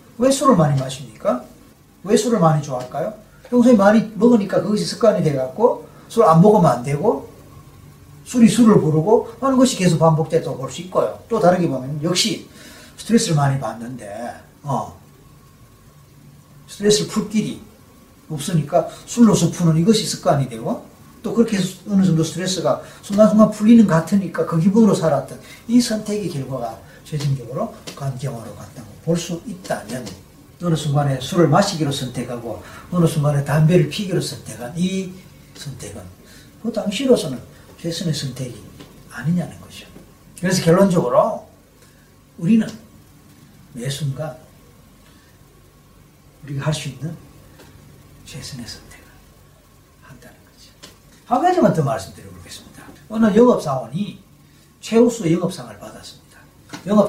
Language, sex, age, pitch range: Korean, male, 40-59, 140-210 Hz